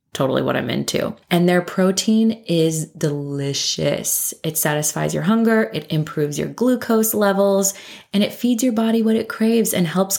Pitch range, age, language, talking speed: 155-185 Hz, 20-39, English, 165 wpm